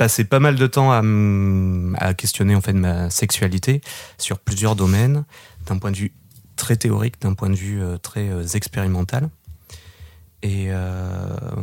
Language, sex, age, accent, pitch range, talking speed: French, male, 30-49, French, 95-115 Hz, 140 wpm